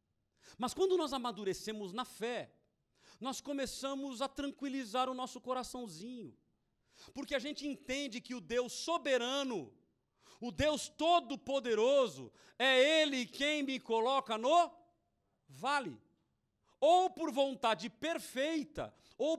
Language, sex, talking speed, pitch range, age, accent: Portuguese, male, 110 wpm, 240-290 Hz, 50-69, Brazilian